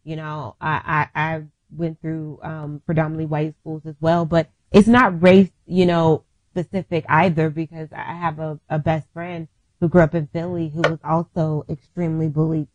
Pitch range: 160-195 Hz